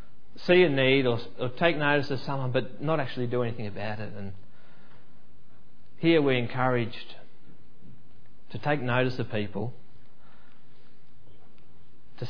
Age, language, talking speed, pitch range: 30-49, English, 125 wpm, 110-135 Hz